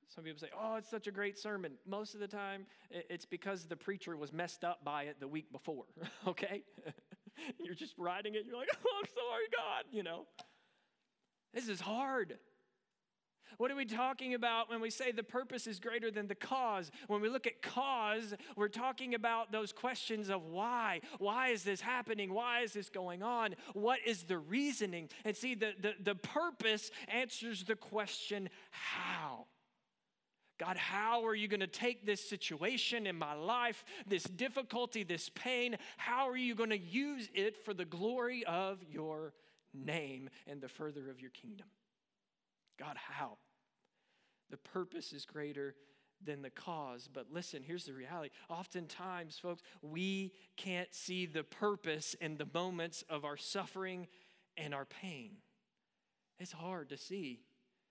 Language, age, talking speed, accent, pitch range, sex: English, 40-59, 165 wpm, American, 175-230 Hz, male